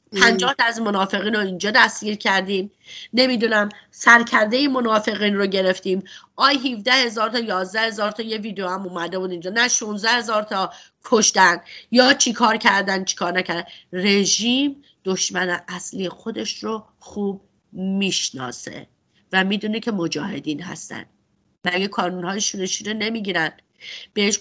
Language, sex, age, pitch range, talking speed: English, female, 30-49, 180-230 Hz, 135 wpm